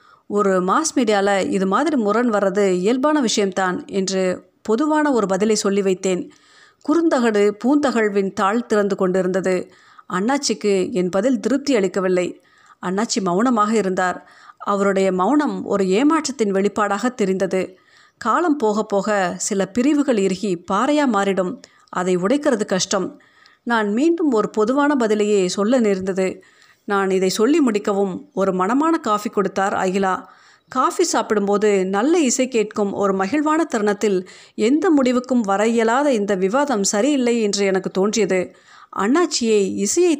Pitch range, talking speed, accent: 195-265 Hz, 120 wpm, native